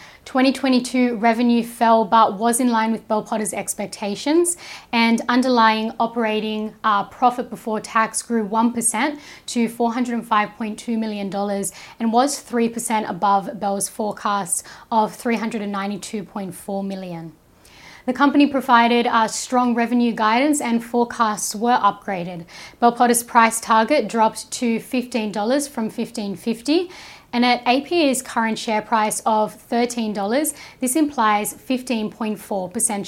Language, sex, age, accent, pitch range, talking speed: English, female, 10-29, Australian, 215-240 Hz, 115 wpm